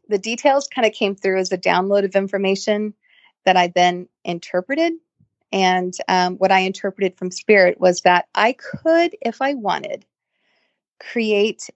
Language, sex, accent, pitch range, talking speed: English, female, American, 185-220 Hz, 155 wpm